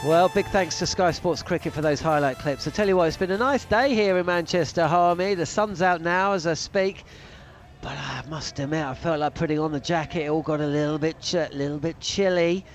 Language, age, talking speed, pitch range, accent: English, 40-59, 245 wpm, 150-185 Hz, British